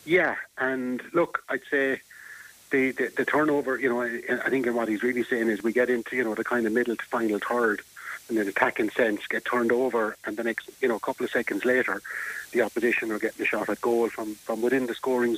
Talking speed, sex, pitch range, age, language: 240 wpm, male, 115-130 Hz, 30-49, English